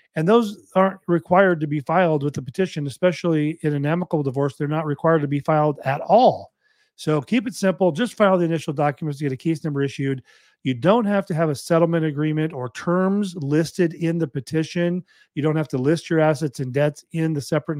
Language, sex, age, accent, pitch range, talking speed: English, male, 40-59, American, 145-185 Hz, 215 wpm